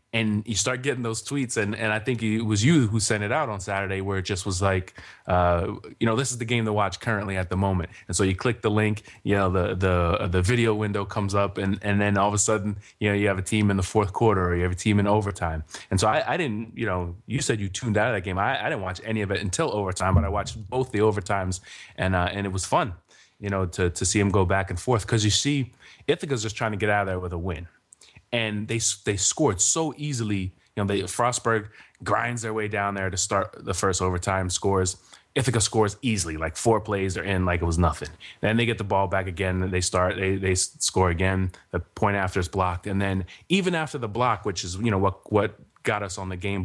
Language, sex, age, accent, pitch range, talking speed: English, male, 20-39, American, 95-110 Hz, 265 wpm